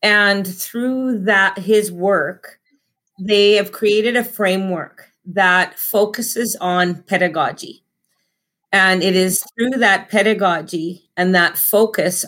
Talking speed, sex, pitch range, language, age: 110 wpm, female, 175-205 Hz, English, 40-59